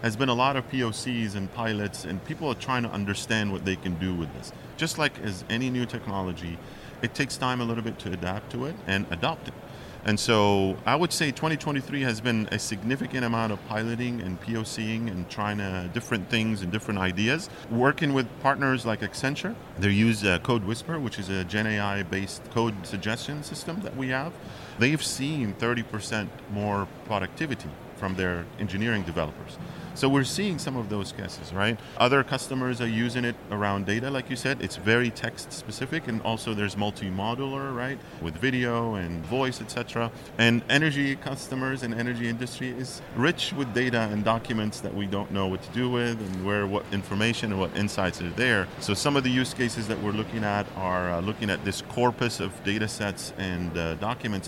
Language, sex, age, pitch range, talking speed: English, male, 40-59, 100-130 Hz, 190 wpm